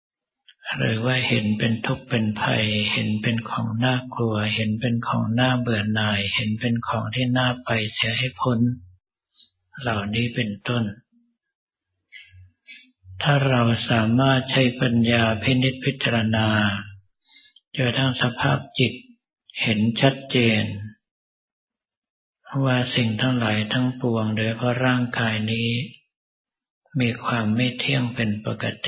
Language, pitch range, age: Thai, 110-125 Hz, 60-79